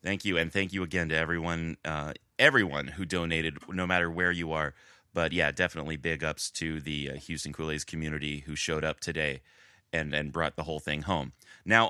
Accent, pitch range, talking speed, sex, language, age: American, 80-100 Hz, 200 wpm, male, English, 30-49